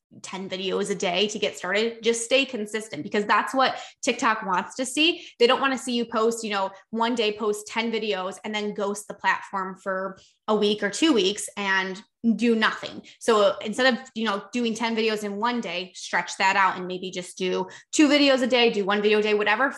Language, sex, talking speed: English, female, 220 wpm